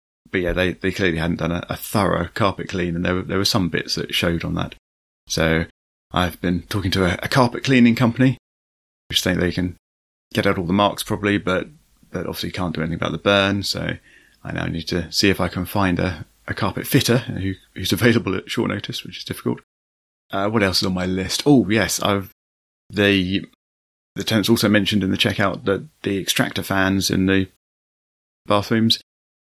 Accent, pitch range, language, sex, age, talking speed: British, 85-115 Hz, English, male, 30-49, 205 wpm